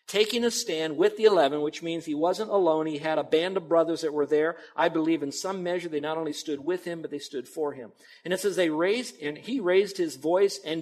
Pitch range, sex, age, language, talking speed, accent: 155-195 Hz, male, 50-69, English, 260 wpm, American